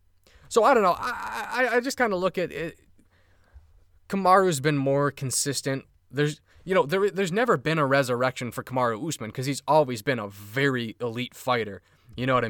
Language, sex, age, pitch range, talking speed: English, male, 20-39, 105-150 Hz, 190 wpm